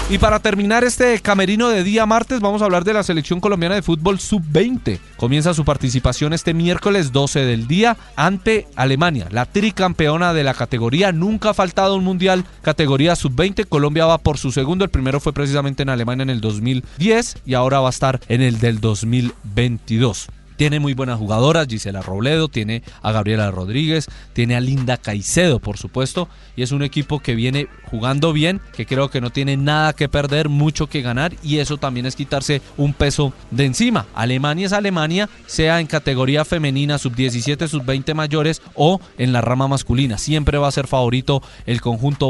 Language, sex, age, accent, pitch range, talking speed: Spanish, male, 30-49, Colombian, 125-165 Hz, 185 wpm